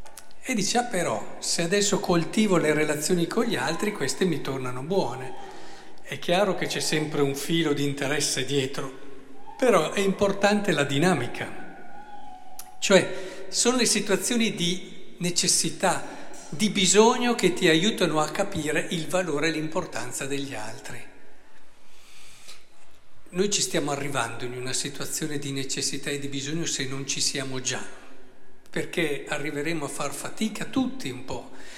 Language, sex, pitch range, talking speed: Italian, male, 135-190 Hz, 140 wpm